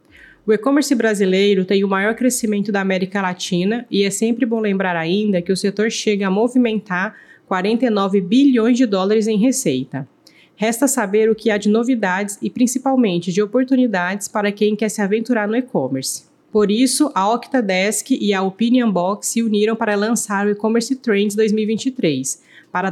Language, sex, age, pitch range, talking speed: Portuguese, female, 20-39, 200-235 Hz, 165 wpm